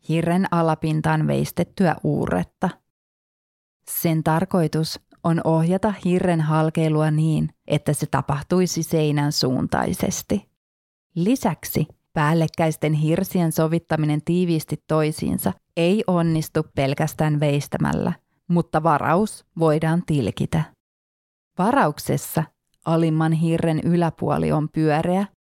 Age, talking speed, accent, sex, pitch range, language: 30-49, 85 wpm, native, female, 150-175 Hz, Finnish